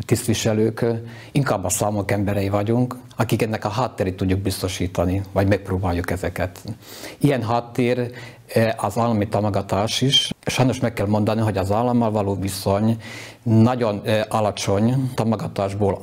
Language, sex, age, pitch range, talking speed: Hungarian, male, 50-69, 100-120 Hz, 125 wpm